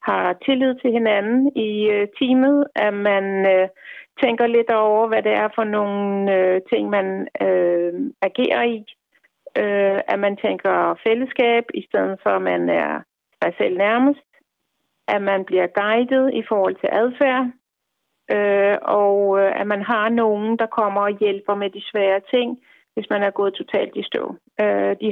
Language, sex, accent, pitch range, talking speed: Danish, female, native, 195-220 Hz, 150 wpm